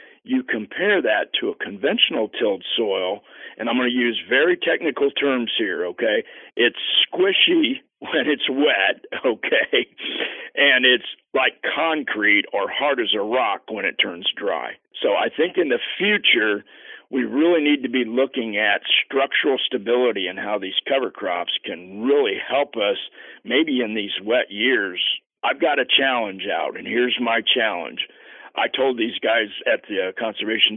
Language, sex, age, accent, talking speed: English, male, 50-69, American, 160 wpm